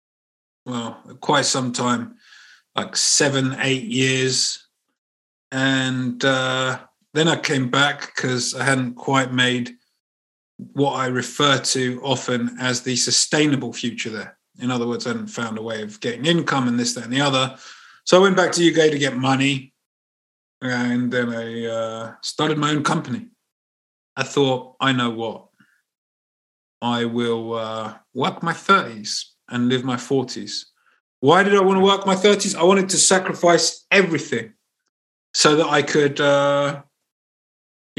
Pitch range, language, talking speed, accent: 125-150 Hz, English, 150 wpm, British